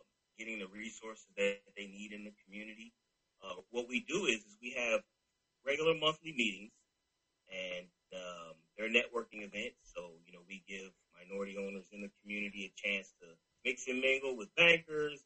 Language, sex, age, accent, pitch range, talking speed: English, male, 30-49, American, 100-130 Hz, 170 wpm